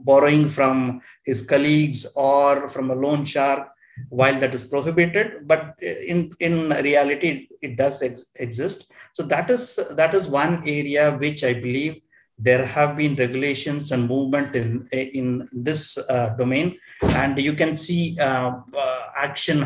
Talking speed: 150 wpm